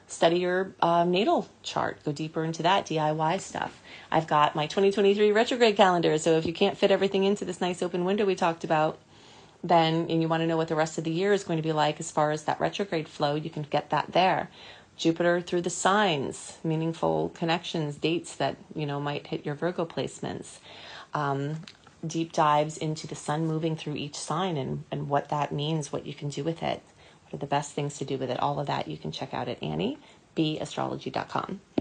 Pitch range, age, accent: 155-200 Hz, 30-49, American